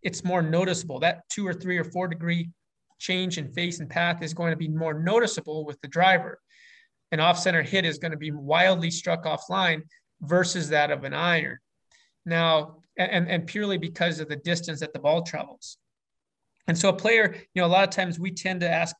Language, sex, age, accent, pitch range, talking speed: English, male, 30-49, American, 160-185 Hz, 210 wpm